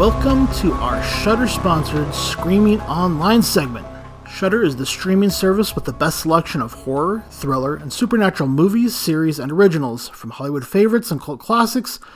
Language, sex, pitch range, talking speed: English, male, 140-200 Hz, 155 wpm